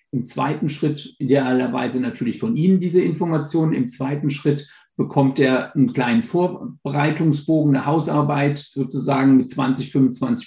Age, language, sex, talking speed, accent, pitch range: 50-69, German, male, 130 wpm, German, 130-155 Hz